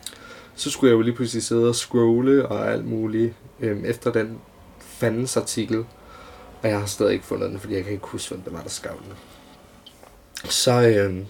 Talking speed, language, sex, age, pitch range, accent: 190 wpm, Danish, male, 20-39, 105-120 Hz, native